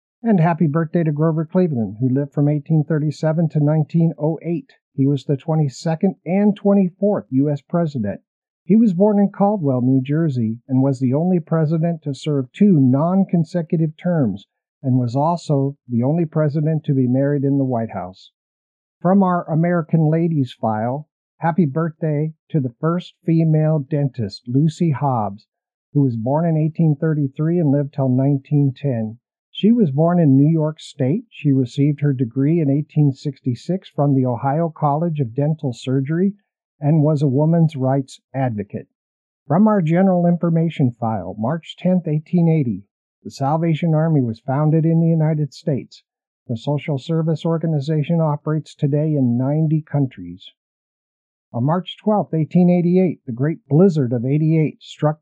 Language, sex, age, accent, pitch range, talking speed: English, male, 50-69, American, 135-165 Hz, 145 wpm